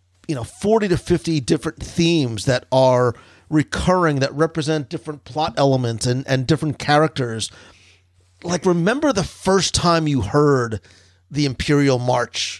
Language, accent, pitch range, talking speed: English, American, 110-160 Hz, 140 wpm